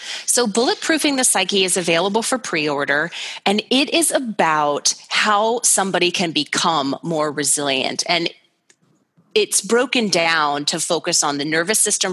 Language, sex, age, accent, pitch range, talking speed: English, female, 30-49, American, 155-200 Hz, 140 wpm